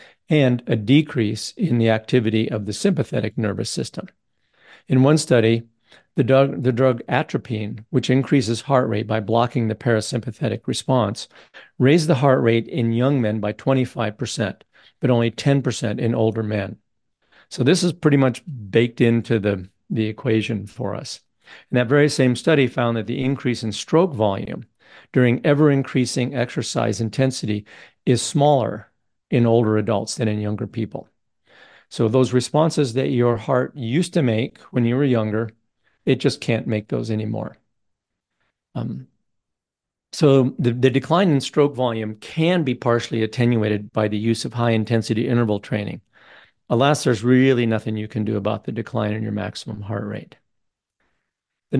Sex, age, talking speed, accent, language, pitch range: male, 50-69, 155 wpm, American, English, 110-135 Hz